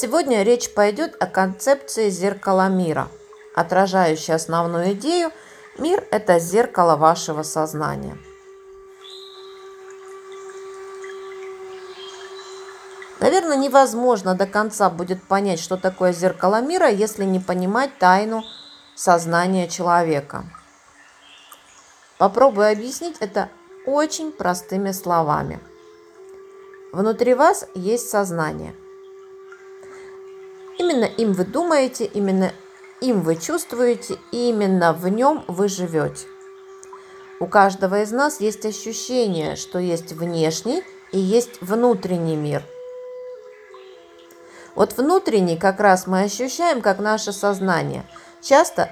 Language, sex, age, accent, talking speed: Russian, female, 40-59, native, 95 wpm